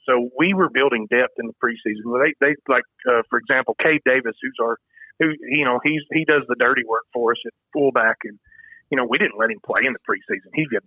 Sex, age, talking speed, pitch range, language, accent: male, 40-59, 245 wpm, 125-150 Hz, English, American